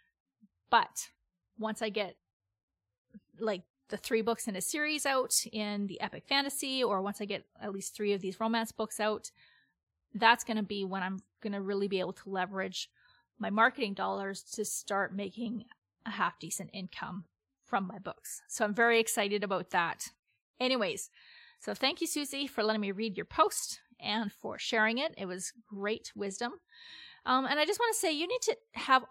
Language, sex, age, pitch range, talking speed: English, female, 30-49, 200-245 Hz, 185 wpm